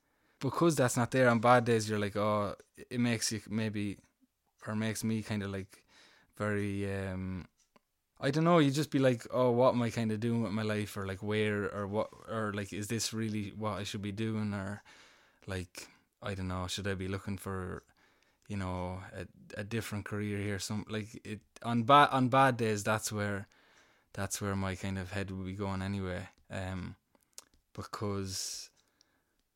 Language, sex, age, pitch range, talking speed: English, male, 20-39, 100-140 Hz, 190 wpm